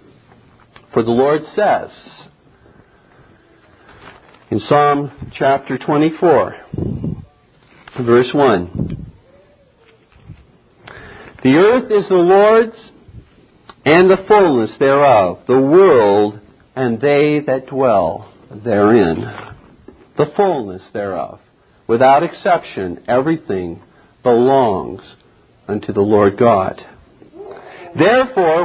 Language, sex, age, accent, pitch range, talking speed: English, male, 50-69, American, 145-225 Hz, 80 wpm